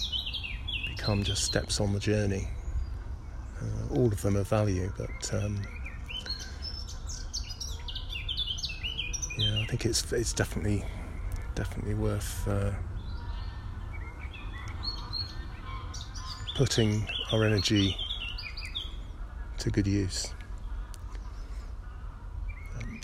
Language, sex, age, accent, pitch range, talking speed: English, male, 40-59, British, 80-105 Hz, 80 wpm